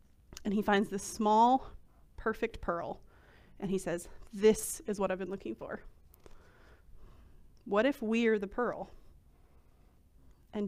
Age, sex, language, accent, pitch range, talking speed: 30-49, female, English, American, 185-225 Hz, 130 wpm